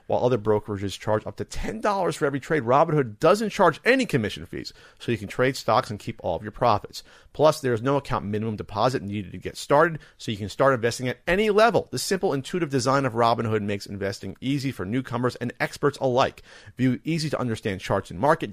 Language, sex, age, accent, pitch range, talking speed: English, male, 40-59, American, 110-145 Hz, 205 wpm